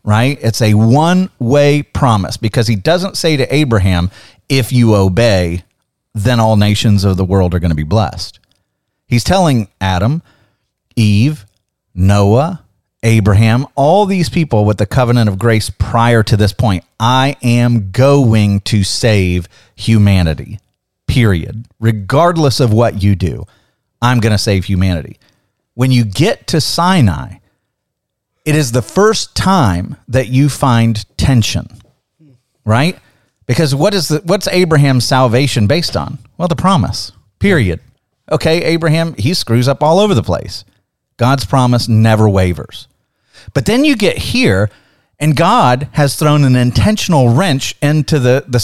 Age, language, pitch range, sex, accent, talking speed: 40-59, English, 105-140 Hz, male, American, 145 wpm